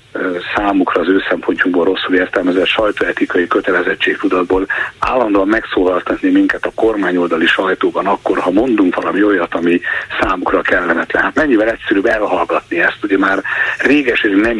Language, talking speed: Hungarian, 130 wpm